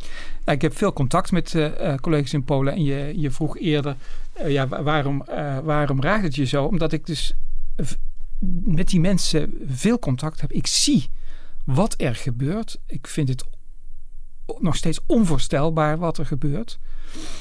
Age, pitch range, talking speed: 60-79, 140-190 Hz, 155 wpm